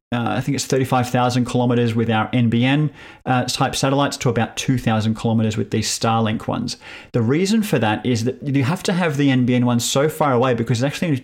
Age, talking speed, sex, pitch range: 30-49, 225 wpm, male, 115-140 Hz